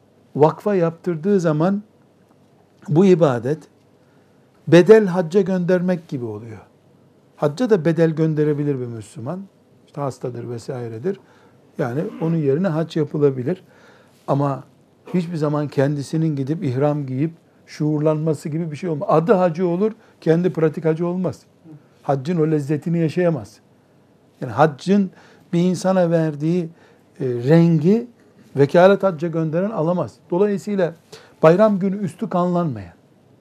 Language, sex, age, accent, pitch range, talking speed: Turkish, male, 60-79, native, 150-185 Hz, 110 wpm